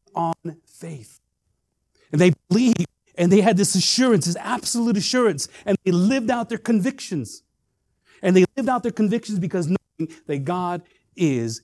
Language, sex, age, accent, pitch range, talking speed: English, male, 40-59, American, 120-200 Hz, 155 wpm